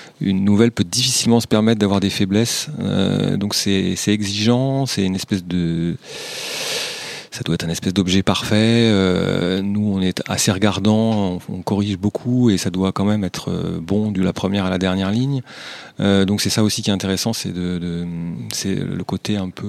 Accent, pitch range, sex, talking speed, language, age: French, 95-105 Hz, male, 185 wpm, French, 30-49